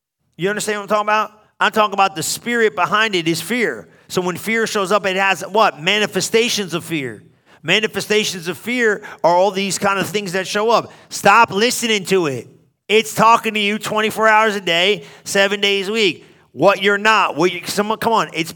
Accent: American